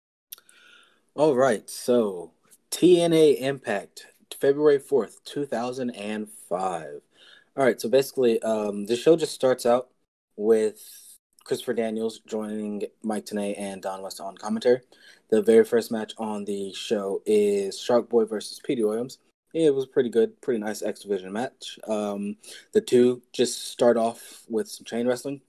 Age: 20-39